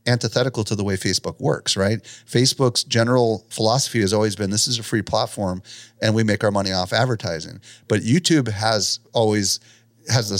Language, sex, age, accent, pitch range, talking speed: English, male, 30-49, American, 100-115 Hz, 175 wpm